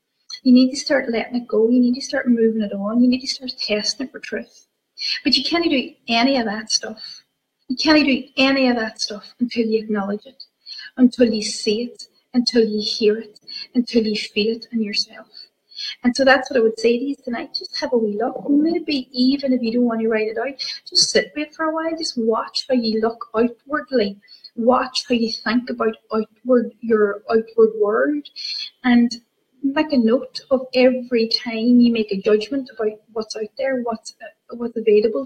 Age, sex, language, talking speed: 30-49, female, English, 205 wpm